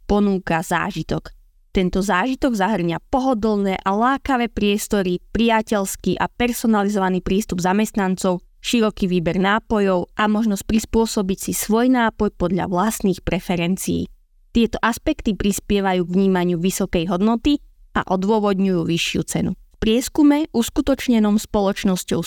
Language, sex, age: Slovak, female, 20-39